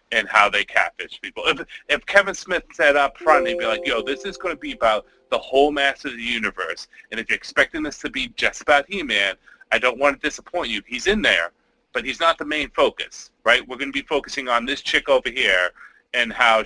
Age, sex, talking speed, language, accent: 30-49, male, 240 wpm, English, American